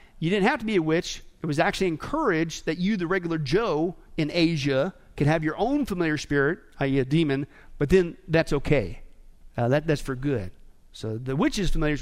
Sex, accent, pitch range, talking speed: male, American, 135-170 Hz, 200 wpm